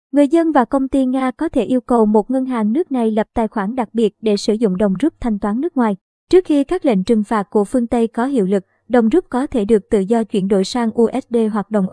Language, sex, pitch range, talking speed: Vietnamese, male, 210-255 Hz, 270 wpm